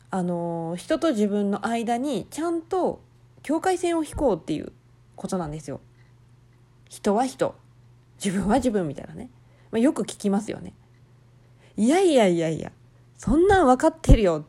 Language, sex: Japanese, female